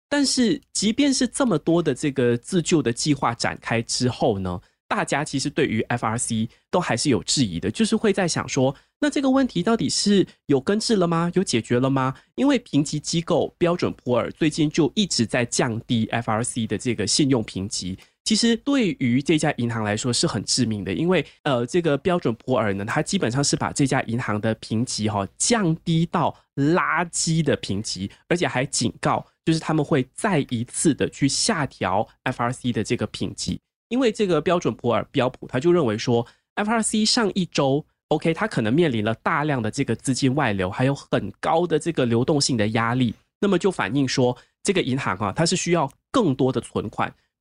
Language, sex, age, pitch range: Chinese, male, 20-39, 115-170 Hz